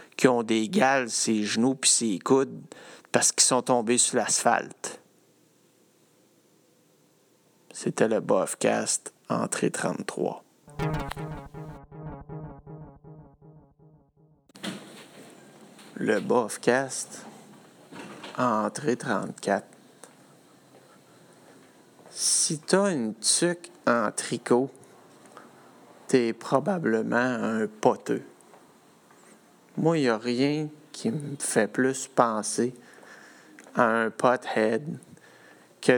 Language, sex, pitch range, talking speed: French, male, 115-145 Hz, 80 wpm